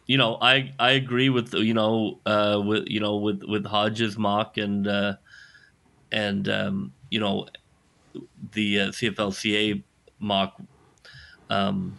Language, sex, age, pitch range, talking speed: English, male, 30-49, 100-125 Hz, 150 wpm